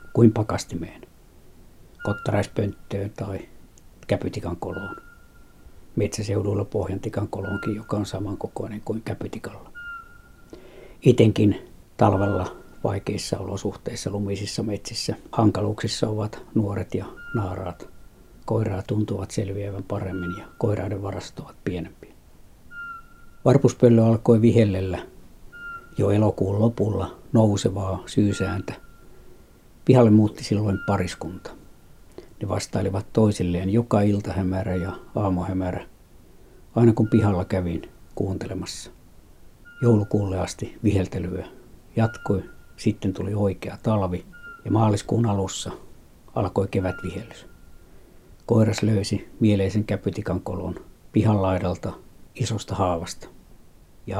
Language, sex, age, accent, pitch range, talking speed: Finnish, male, 60-79, native, 95-110 Hz, 85 wpm